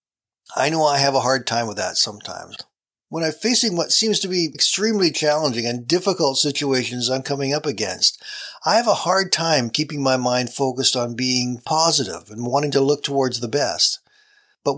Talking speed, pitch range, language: 185 wpm, 120-155 Hz, English